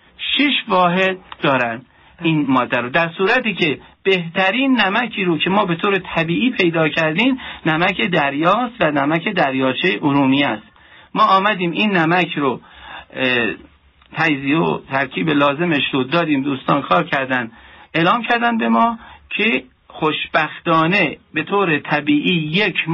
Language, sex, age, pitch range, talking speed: Persian, male, 50-69, 150-215 Hz, 130 wpm